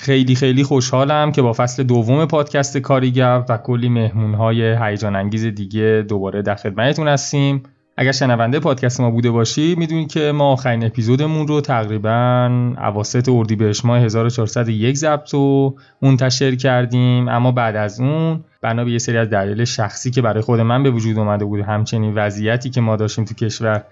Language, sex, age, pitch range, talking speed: Persian, male, 20-39, 110-130 Hz, 165 wpm